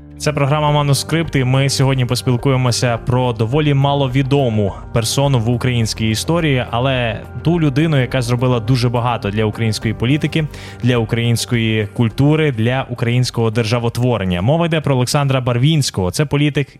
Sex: male